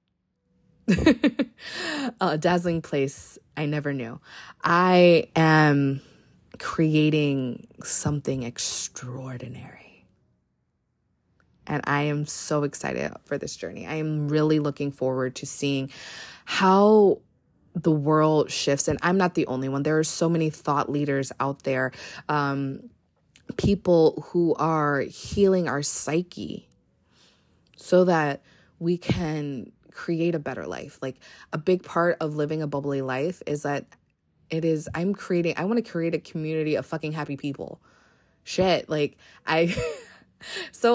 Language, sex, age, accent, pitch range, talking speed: English, female, 20-39, American, 145-170 Hz, 130 wpm